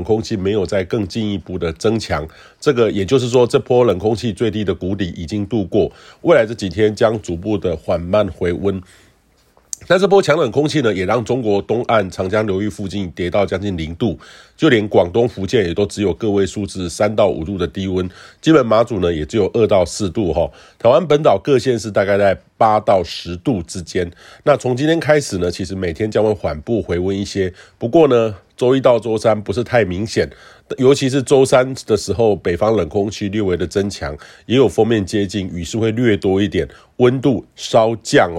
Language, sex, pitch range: Chinese, male, 95-115 Hz